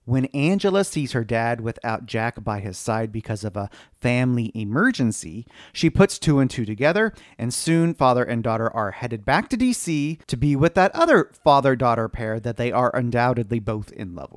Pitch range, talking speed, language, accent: 110-145 Hz, 190 wpm, English, American